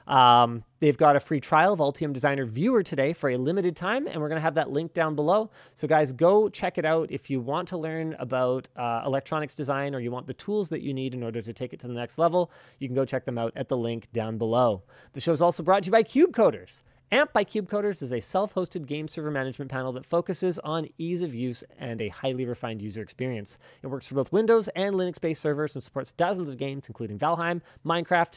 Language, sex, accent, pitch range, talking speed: English, male, American, 125-170 Hz, 240 wpm